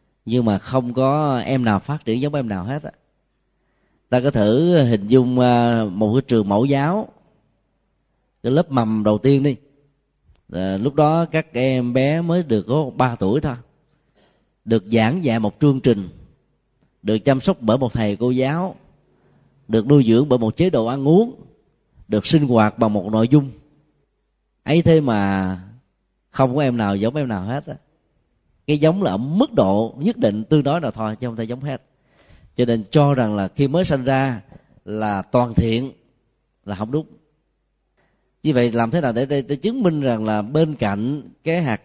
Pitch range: 110-145 Hz